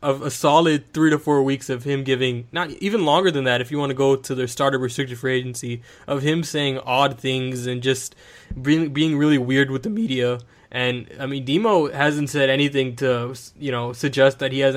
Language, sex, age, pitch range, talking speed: English, male, 20-39, 125-145 Hz, 220 wpm